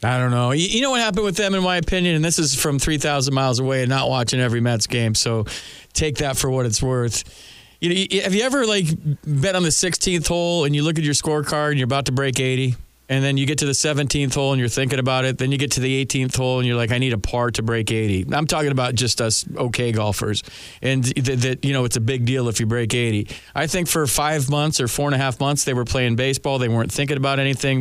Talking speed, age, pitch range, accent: 265 wpm, 40-59, 120-145 Hz, American